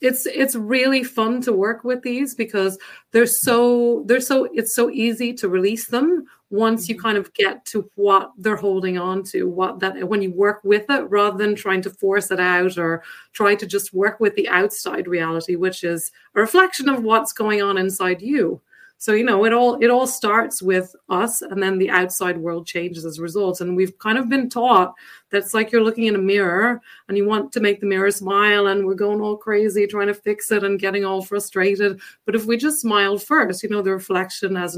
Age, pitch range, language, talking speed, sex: 30-49, 185-230 Hz, English, 220 wpm, female